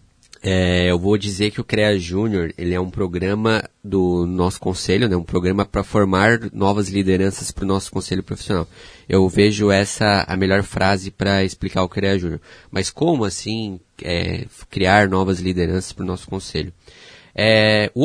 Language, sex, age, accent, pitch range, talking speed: Portuguese, male, 20-39, Brazilian, 95-110 Hz, 160 wpm